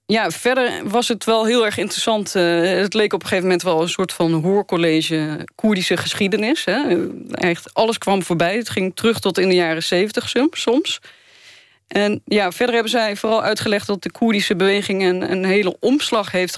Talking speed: 180 wpm